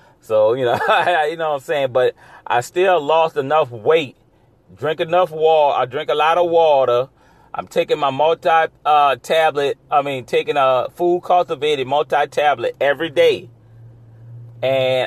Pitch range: 125-170 Hz